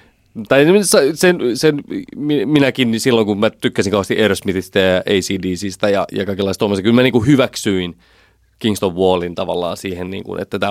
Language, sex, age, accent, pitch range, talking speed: Finnish, male, 30-49, native, 95-110 Hz, 150 wpm